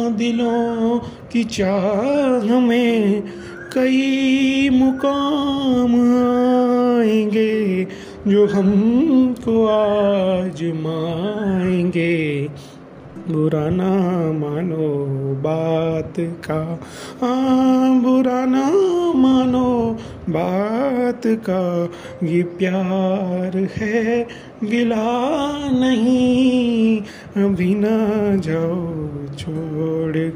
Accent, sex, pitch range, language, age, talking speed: native, male, 165-235 Hz, Hindi, 30-49, 55 wpm